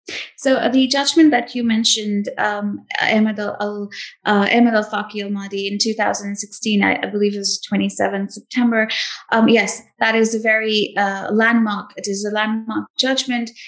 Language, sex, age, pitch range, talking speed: English, female, 20-39, 205-240 Hz, 175 wpm